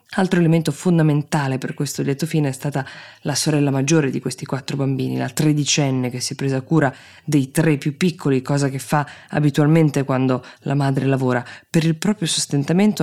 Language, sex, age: Italian, female, 20-39